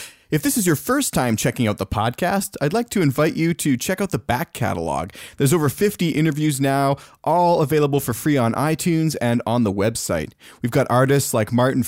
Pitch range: 120-150 Hz